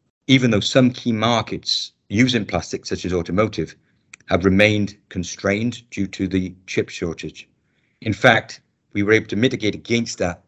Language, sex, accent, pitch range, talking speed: English, male, British, 90-115 Hz, 155 wpm